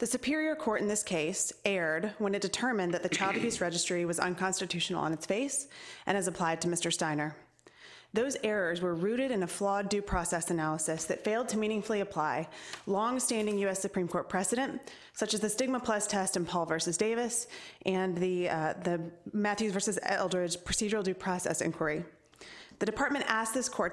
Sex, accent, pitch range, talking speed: female, American, 175-215 Hz, 185 wpm